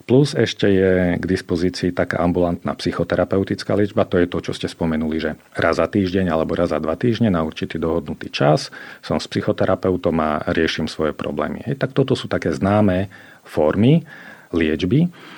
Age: 40-59